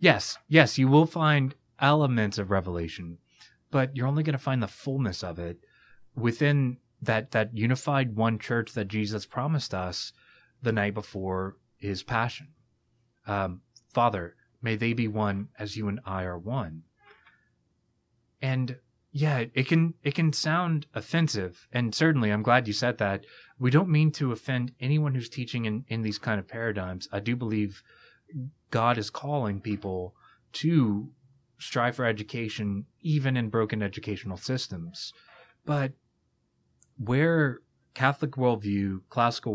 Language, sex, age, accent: English, male, 30-49, American